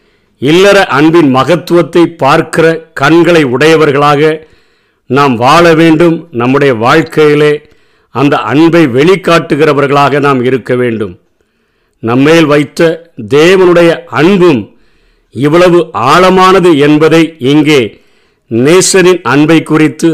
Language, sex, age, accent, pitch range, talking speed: Tamil, male, 50-69, native, 140-170 Hz, 85 wpm